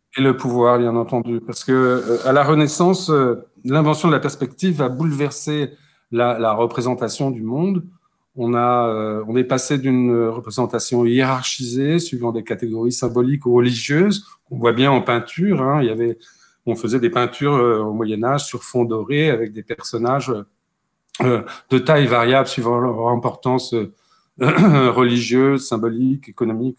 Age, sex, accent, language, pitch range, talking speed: 40-59, male, French, French, 120-150 Hz, 160 wpm